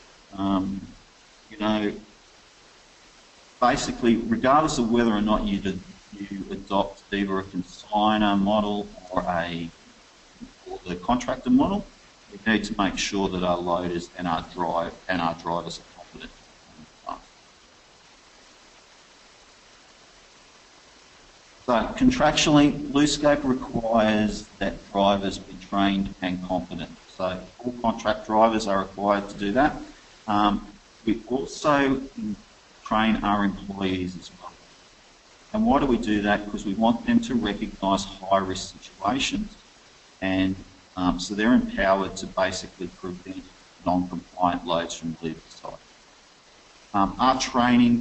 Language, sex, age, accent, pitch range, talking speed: English, male, 50-69, Australian, 95-115 Hz, 120 wpm